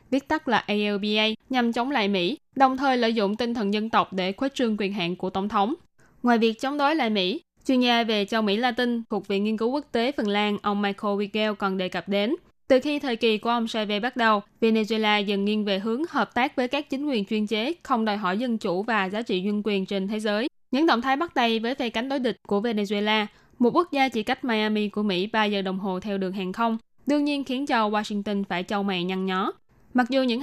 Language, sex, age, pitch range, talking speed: Vietnamese, female, 10-29, 205-250 Hz, 250 wpm